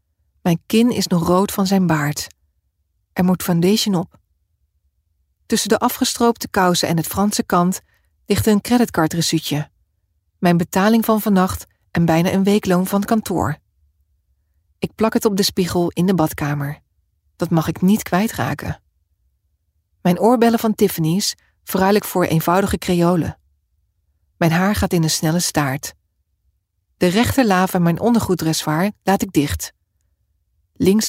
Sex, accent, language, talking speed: female, Dutch, English, 140 wpm